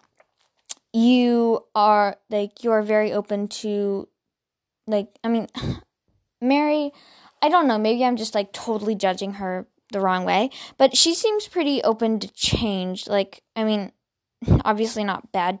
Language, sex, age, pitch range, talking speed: English, female, 10-29, 205-285 Hz, 145 wpm